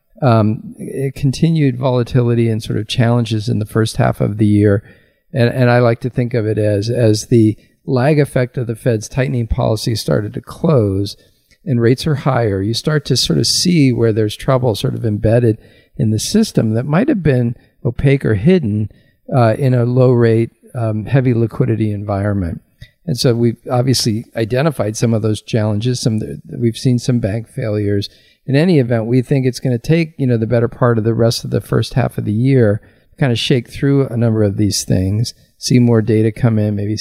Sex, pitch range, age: male, 105-130 Hz, 50-69